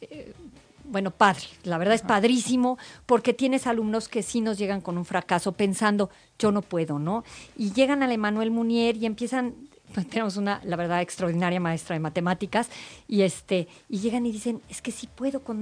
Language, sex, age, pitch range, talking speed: Spanish, female, 40-59, 185-240 Hz, 175 wpm